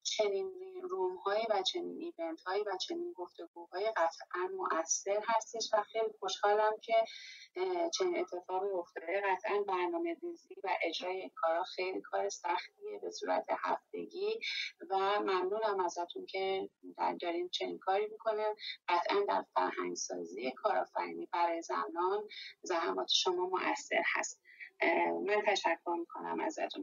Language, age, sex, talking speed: Persian, 30-49, female, 120 wpm